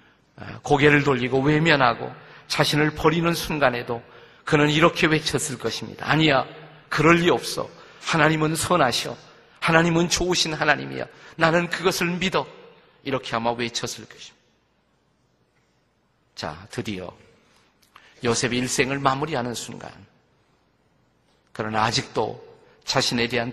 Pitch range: 115-150 Hz